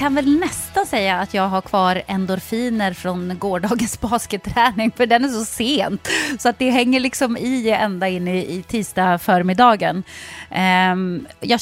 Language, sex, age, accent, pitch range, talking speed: Swedish, female, 30-49, native, 190-265 Hz, 155 wpm